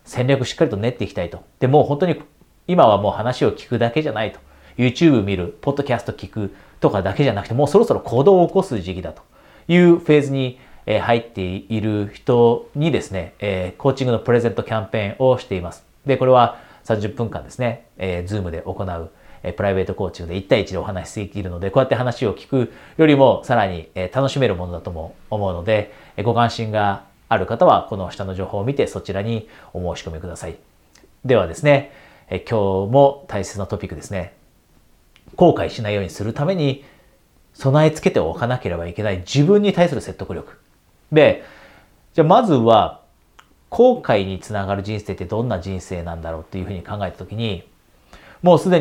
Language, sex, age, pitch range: Japanese, male, 40-59, 95-135 Hz